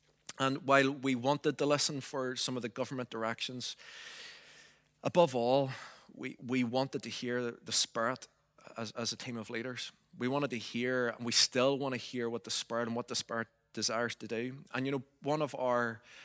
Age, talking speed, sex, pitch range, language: 20-39, 195 wpm, male, 120-135 Hz, English